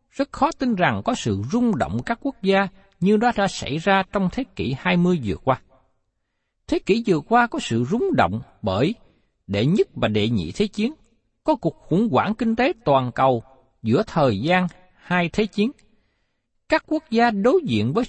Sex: male